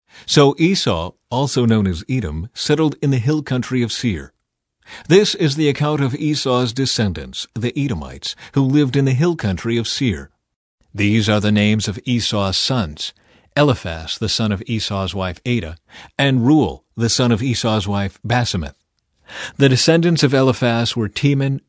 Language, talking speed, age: English, 160 wpm, 50-69